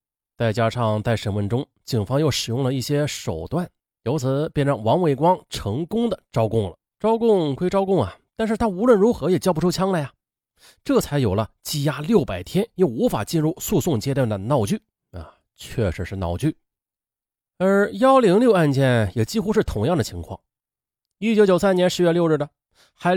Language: Chinese